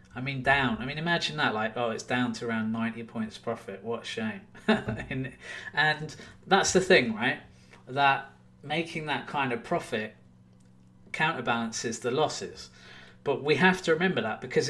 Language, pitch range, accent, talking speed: English, 115-160 Hz, British, 165 wpm